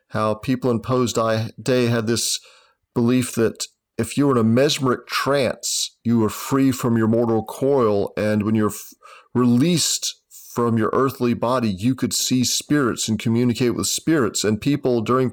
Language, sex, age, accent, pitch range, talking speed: English, male, 40-59, American, 105-125 Hz, 165 wpm